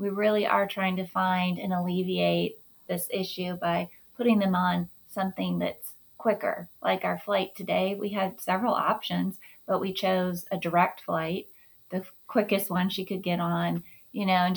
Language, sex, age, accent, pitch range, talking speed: English, female, 30-49, American, 170-195 Hz, 170 wpm